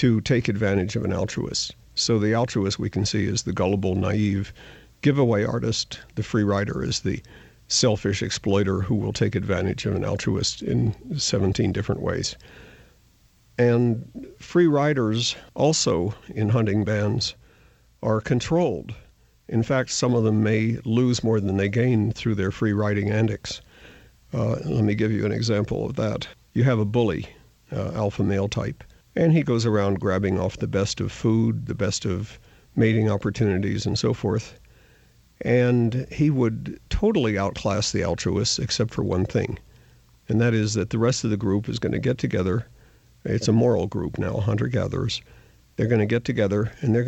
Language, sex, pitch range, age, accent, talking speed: English, male, 100-120 Hz, 50-69, American, 170 wpm